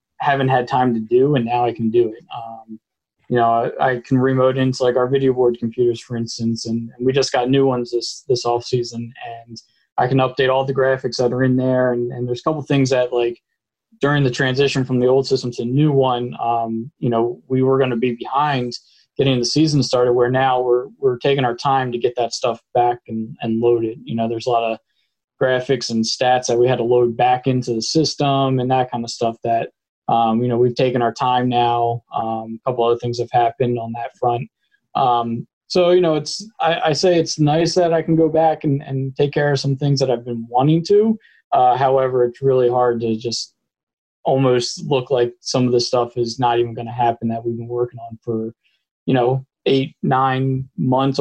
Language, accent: English, American